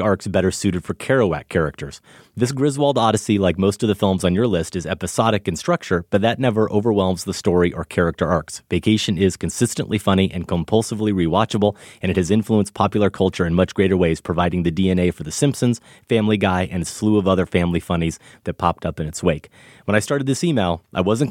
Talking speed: 210 wpm